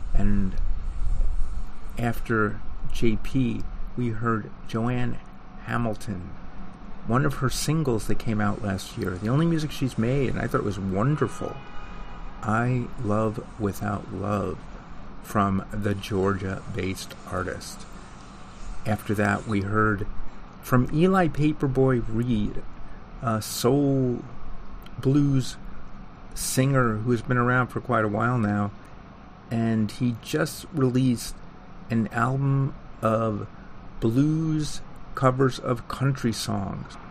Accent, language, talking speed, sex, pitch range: American, English, 110 wpm, male, 100-120 Hz